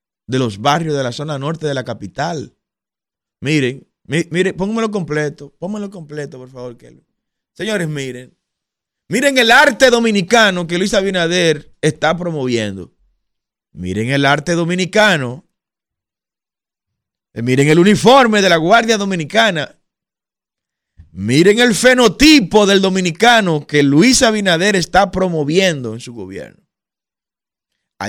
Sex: male